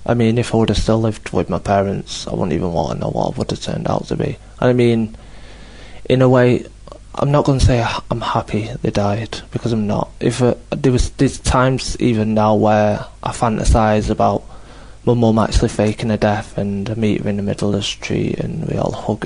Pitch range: 100-115 Hz